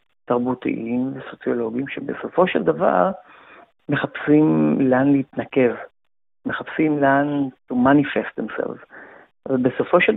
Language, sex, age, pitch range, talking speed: Hebrew, male, 50-69, 130-165 Hz, 90 wpm